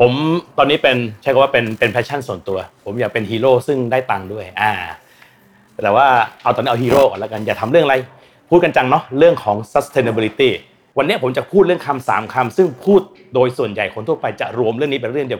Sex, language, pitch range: male, Thai, 120-155 Hz